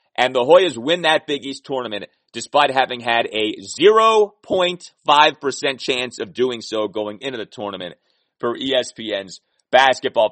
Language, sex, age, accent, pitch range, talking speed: English, male, 30-49, American, 115-150 Hz, 140 wpm